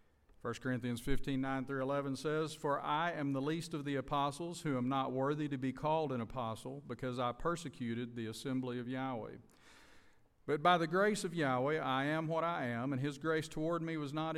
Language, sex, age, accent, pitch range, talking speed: English, male, 50-69, American, 120-160 Hz, 205 wpm